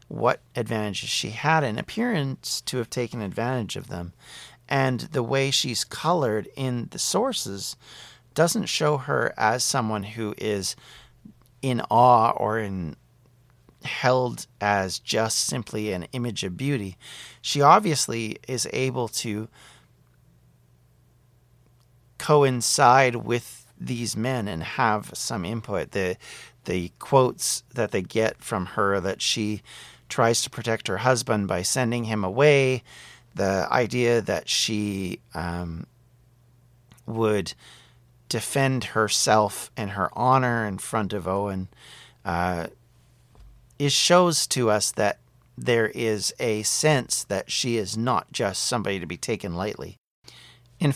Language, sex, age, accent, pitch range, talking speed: English, male, 40-59, American, 100-125 Hz, 125 wpm